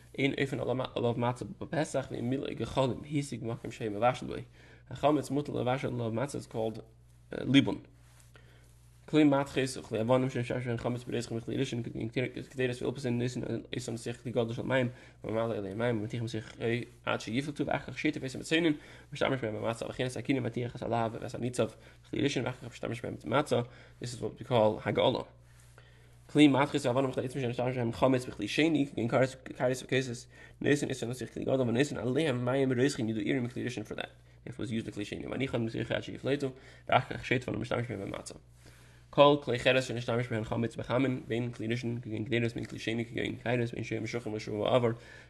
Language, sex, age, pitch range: English, male, 20-39, 110-130 Hz